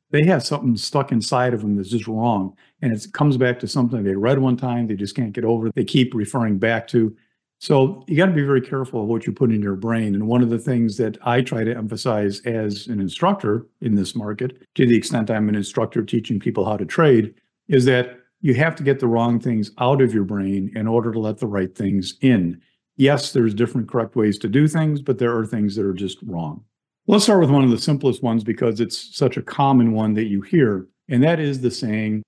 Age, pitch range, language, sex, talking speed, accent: 50-69, 110-130 Hz, English, male, 245 wpm, American